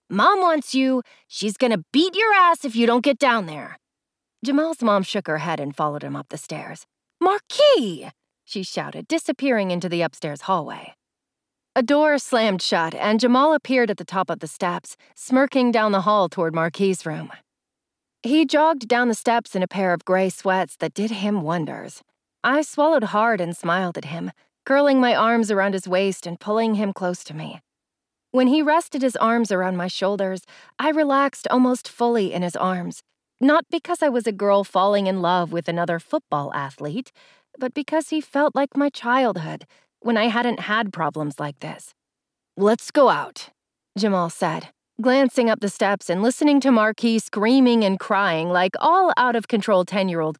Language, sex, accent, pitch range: English, female, American, 185-265 Hz